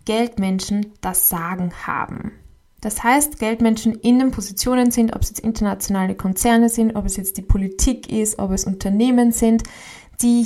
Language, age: German, 20-39